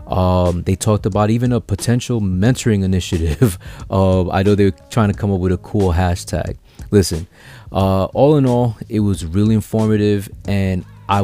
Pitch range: 90-110 Hz